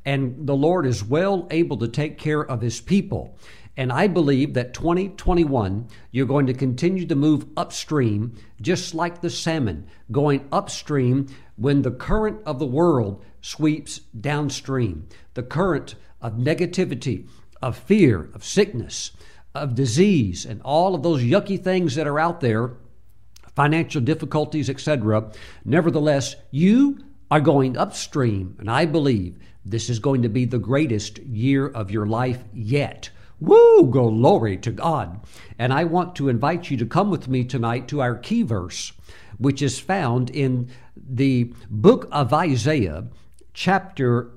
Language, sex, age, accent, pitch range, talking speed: English, male, 60-79, American, 120-165 Hz, 145 wpm